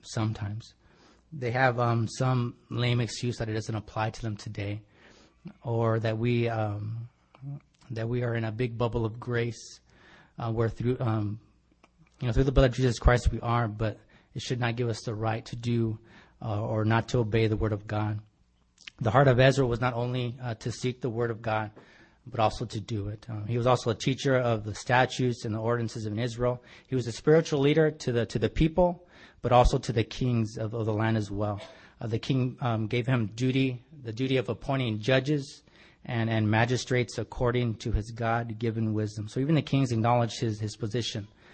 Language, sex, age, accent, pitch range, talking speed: English, male, 30-49, American, 110-125 Hz, 205 wpm